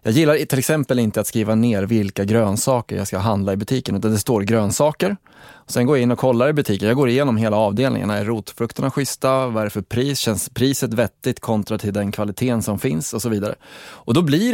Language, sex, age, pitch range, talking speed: English, male, 20-39, 110-135 Hz, 225 wpm